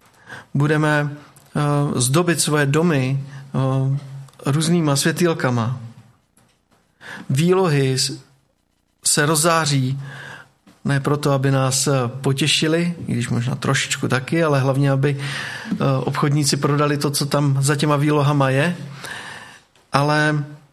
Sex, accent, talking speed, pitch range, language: male, native, 95 wpm, 120-150 Hz, Czech